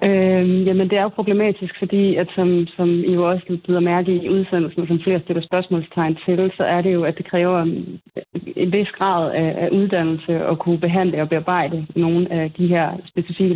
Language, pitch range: Danish, 165-185 Hz